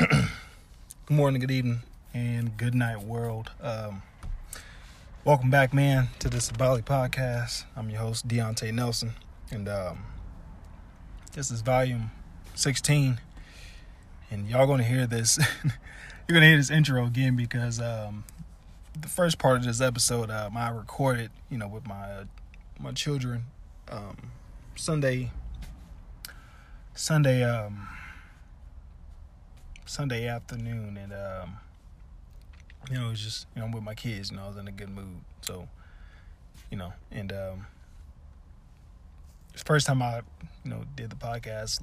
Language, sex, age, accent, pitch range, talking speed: English, male, 20-39, American, 85-120 Hz, 140 wpm